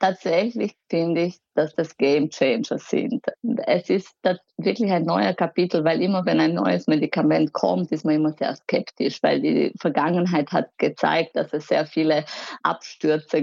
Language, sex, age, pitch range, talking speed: German, female, 20-39, 160-195 Hz, 165 wpm